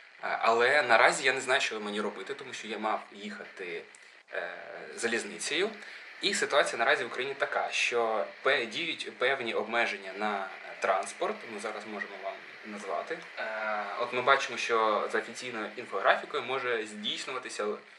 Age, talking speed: 20-39, 140 wpm